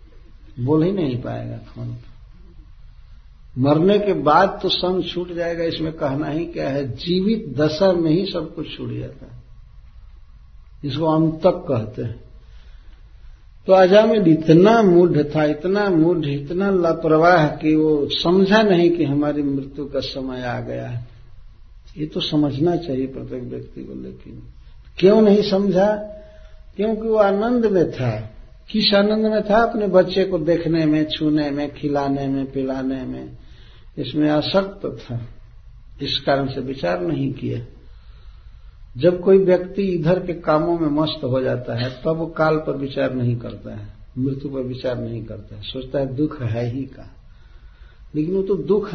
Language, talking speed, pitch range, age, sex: Hindi, 160 wpm, 120-175 Hz, 60-79, male